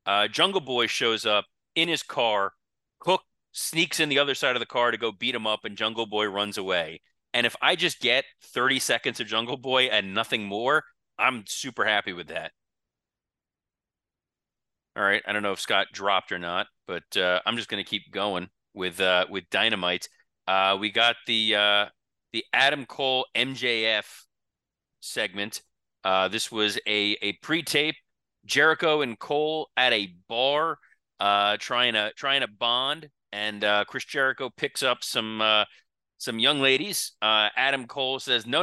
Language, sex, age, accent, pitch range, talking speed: English, male, 30-49, American, 105-130 Hz, 170 wpm